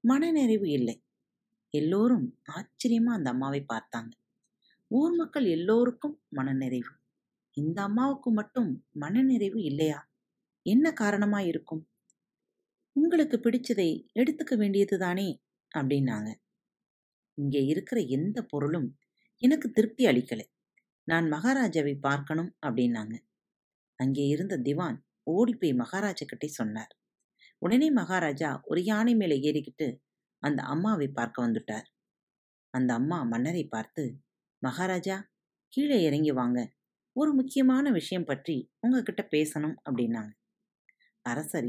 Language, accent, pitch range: Tamil, native, 140-230 Hz